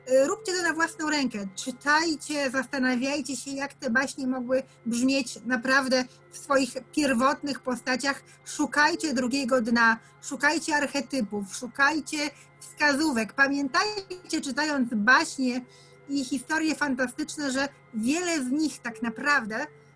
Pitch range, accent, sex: 250-295 Hz, native, female